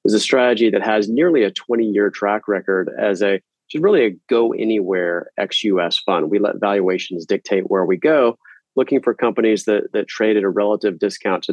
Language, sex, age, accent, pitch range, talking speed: English, male, 30-49, American, 95-110 Hz, 175 wpm